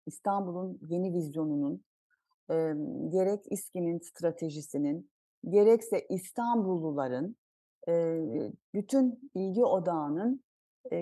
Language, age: Turkish, 40-59